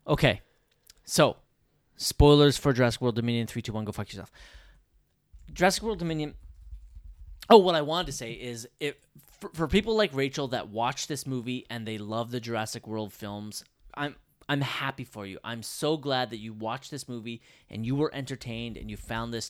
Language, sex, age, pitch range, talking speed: English, male, 30-49, 110-145 Hz, 190 wpm